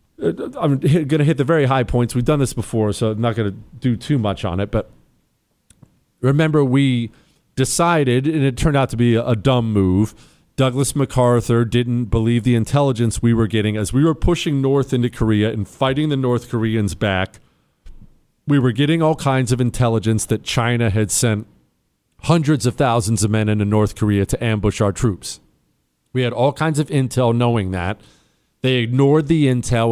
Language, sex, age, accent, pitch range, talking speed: English, male, 40-59, American, 110-145 Hz, 185 wpm